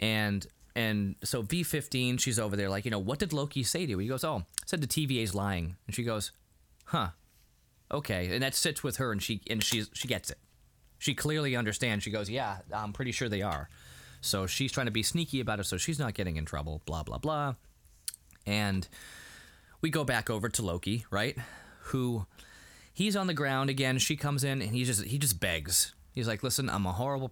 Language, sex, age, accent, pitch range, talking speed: English, male, 20-39, American, 95-135 Hz, 215 wpm